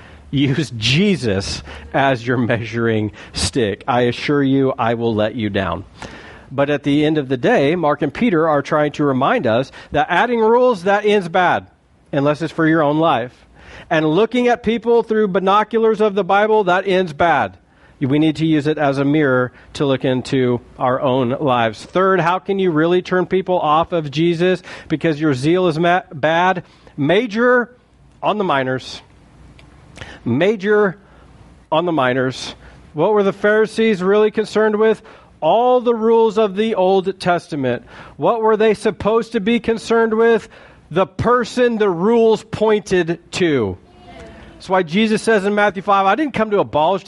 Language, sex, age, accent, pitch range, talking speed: English, male, 40-59, American, 140-220 Hz, 165 wpm